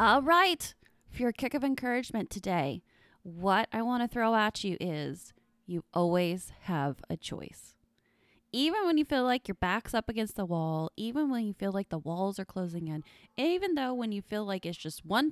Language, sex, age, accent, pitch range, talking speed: English, female, 20-39, American, 180-255 Hz, 195 wpm